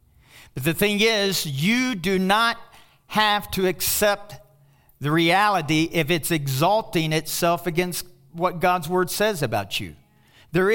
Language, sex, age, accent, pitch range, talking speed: English, male, 50-69, American, 120-180 Hz, 130 wpm